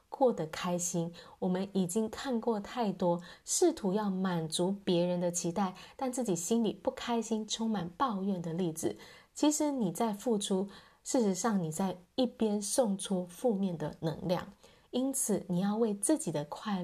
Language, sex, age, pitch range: Chinese, female, 20-39, 175-230 Hz